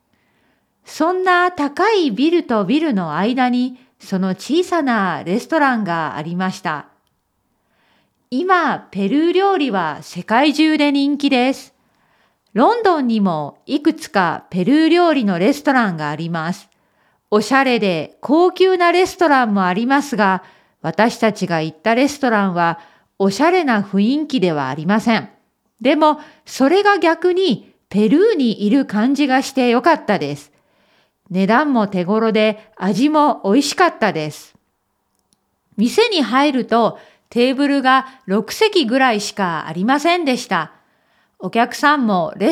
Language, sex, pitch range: Japanese, female, 200-325 Hz